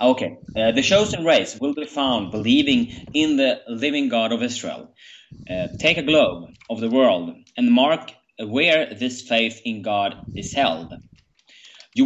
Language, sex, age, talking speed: English, male, 30-49, 160 wpm